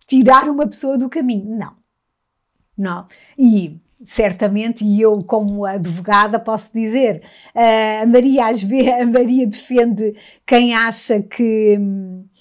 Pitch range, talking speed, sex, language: 205-245 Hz, 105 wpm, female, Portuguese